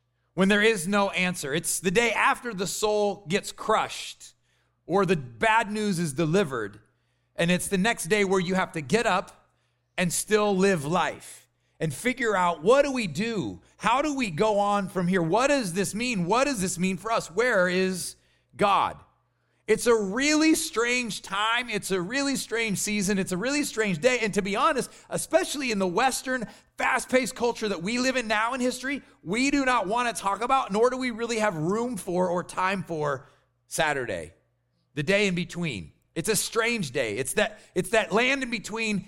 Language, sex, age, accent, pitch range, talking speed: English, male, 30-49, American, 165-225 Hz, 190 wpm